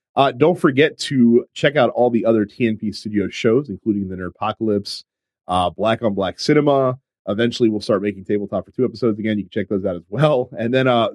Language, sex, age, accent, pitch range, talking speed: English, male, 30-49, American, 100-130 Hz, 210 wpm